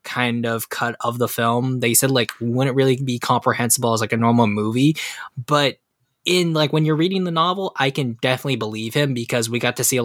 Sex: male